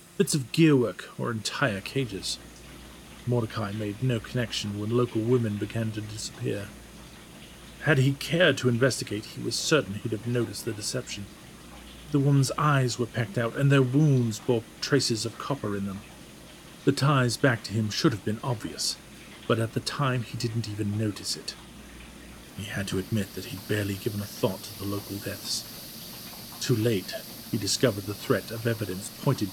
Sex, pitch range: male, 100-130 Hz